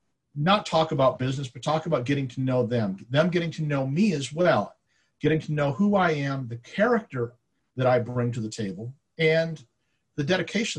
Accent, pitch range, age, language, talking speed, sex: American, 120-155 Hz, 50-69, English, 195 wpm, male